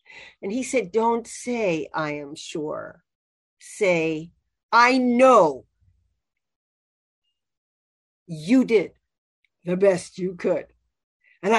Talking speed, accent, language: 95 wpm, American, English